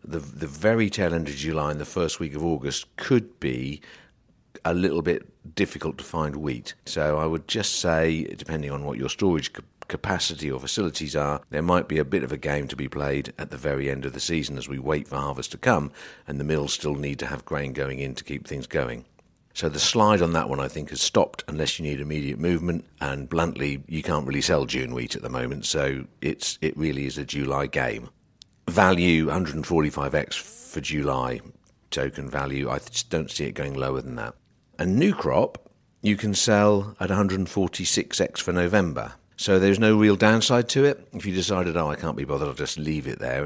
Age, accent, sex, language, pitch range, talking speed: 50-69, British, male, English, 70-85 Hz, 215 wpm